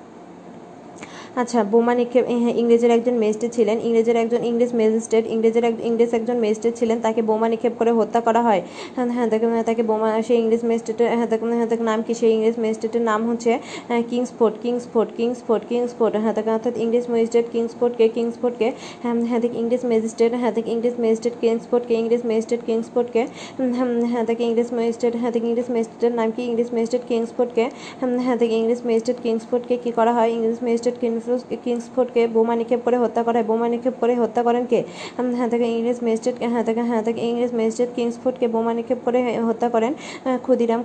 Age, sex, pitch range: 20-39, female, 230-240 Hz